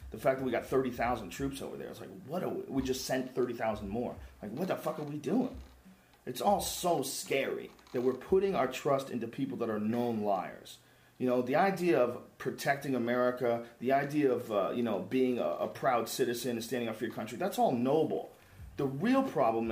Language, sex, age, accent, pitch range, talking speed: English, male, 40-59, American, 135-220 Hz, 215 wpm